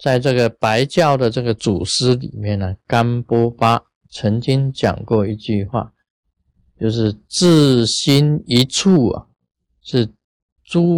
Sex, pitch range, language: male, 100-130 Hz, Chinese